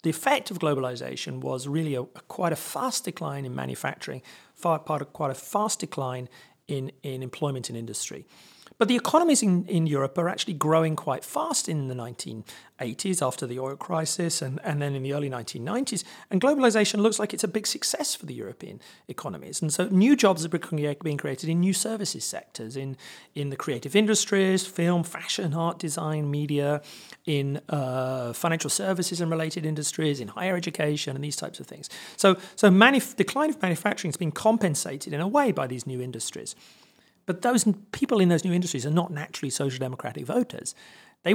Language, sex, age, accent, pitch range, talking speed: Dutch, male, 40-59, British, 145-205 Hz, 190 wpm